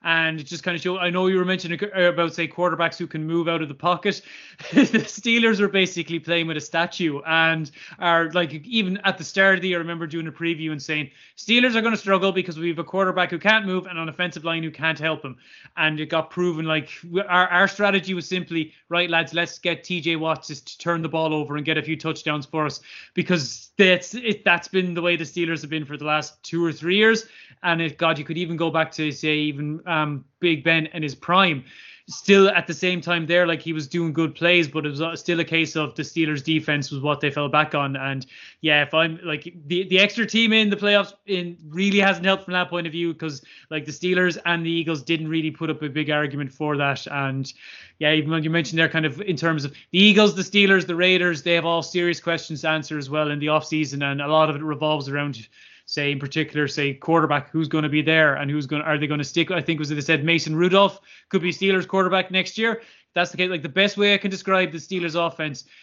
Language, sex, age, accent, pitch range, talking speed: English, male, 20-39, Irish, 155-180 Hz, 255 wpm